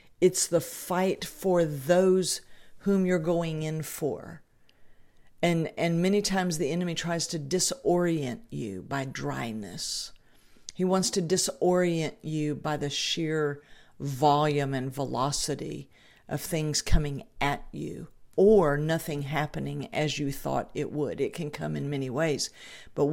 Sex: female